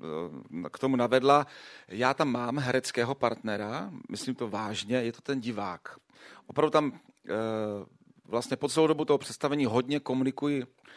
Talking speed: 140 wpm